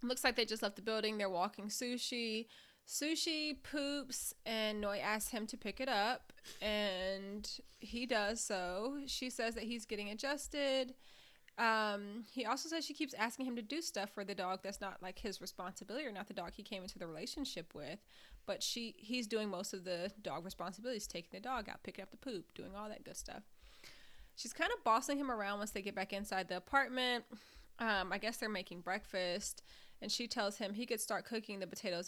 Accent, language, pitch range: American, English, 200-255 Hz